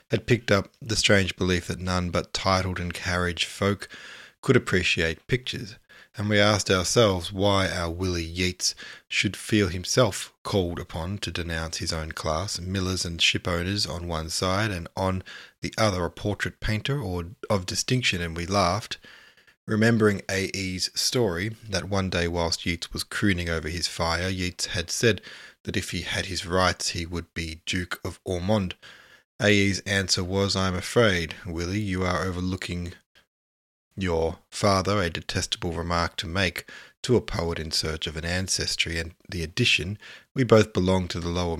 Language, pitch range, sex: English, 85-100 Hz, male